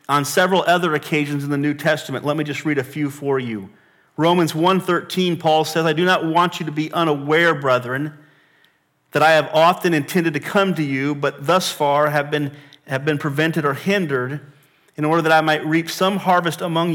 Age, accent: 40-59, American